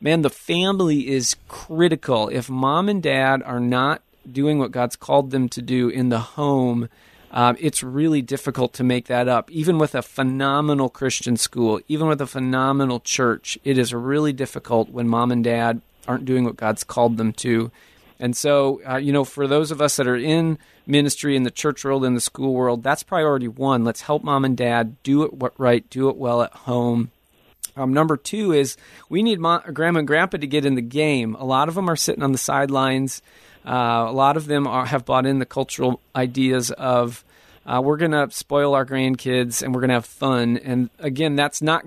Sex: male